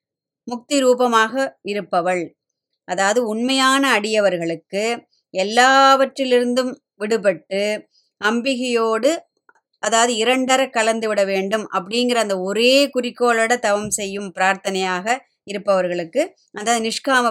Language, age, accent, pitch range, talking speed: Tamil, 20-39, native, 190-245 Hz, 85 wpm